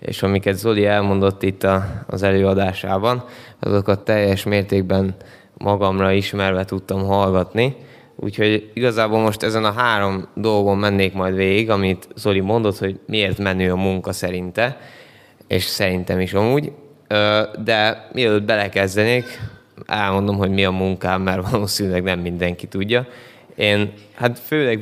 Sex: male